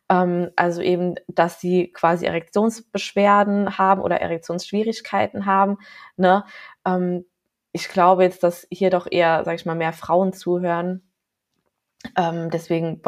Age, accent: 20-39, German